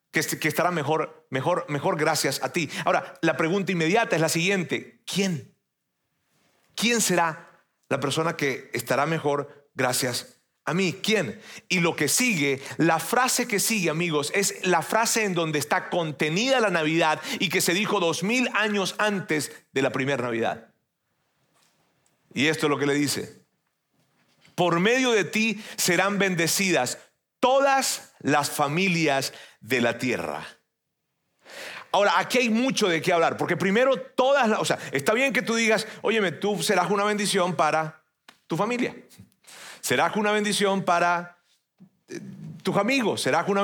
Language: Spanish